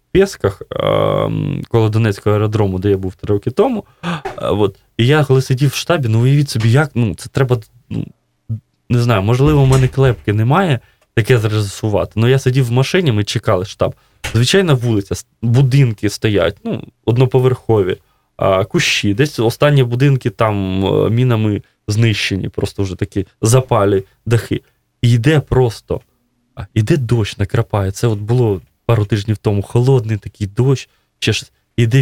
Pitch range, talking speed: 105-130 Hz, 155 wpm